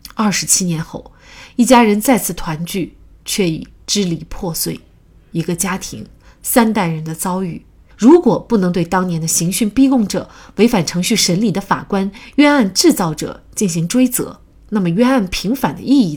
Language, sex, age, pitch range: Chinese, female, 30-49, 165-210 Hz